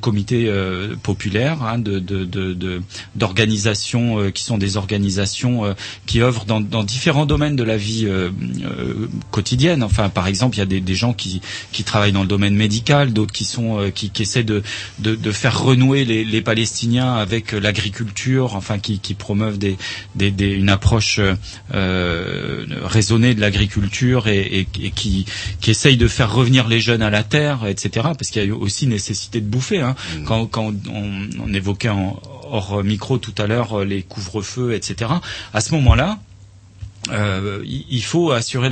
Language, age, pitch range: French, 30-49, 100-120 Hz